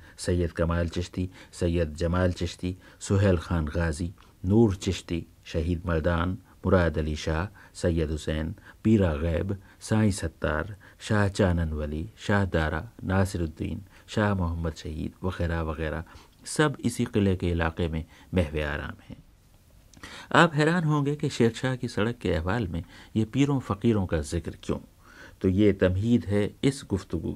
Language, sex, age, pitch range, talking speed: Hindi, male, 50-69, 85-105 Hz, 135 wpm